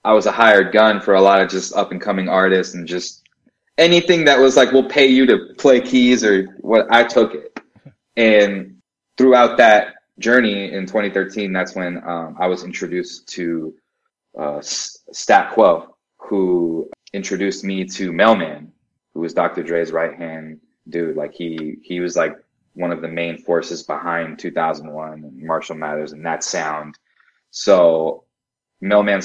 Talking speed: 165 wpm